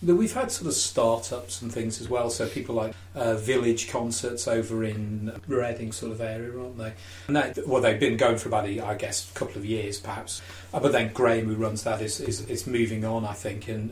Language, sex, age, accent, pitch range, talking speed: English, male, 30-49, British, 100-120 Hz, 220 wpm